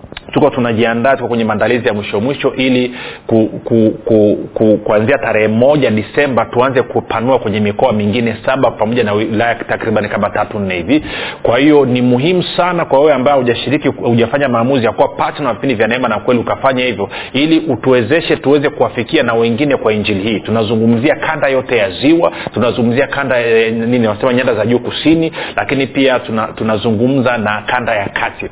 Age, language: 40-59, Swahili